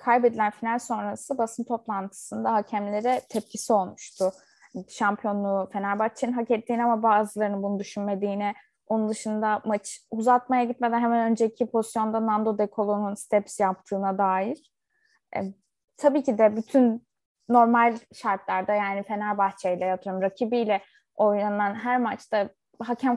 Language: Turkish